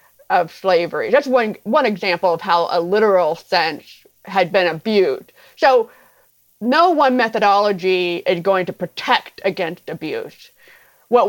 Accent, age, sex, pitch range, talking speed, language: American, 30-49, female, 190-265 Hz, 135 wpm, English